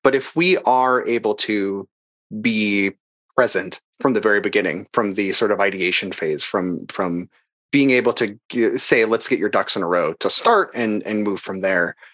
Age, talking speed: 30-49, 190 wpm